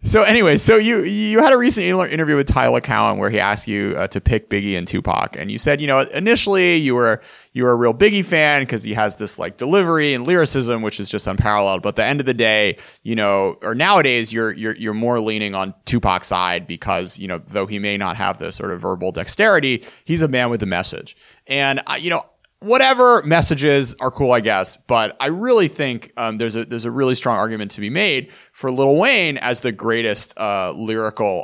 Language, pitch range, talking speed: English, 110-160 Hz, 225 wpm